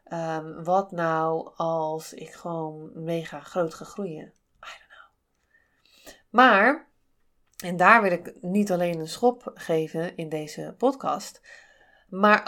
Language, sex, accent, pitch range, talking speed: Dutch, female, Dutch, 155-180 Hz, 130 wpm